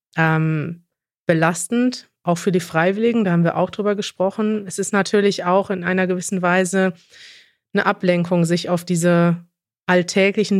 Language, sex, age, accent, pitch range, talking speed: German, female, 30-49, German, 170-195 Hz, 140 wpm